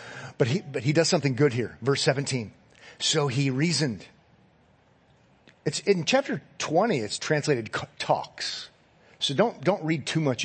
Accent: American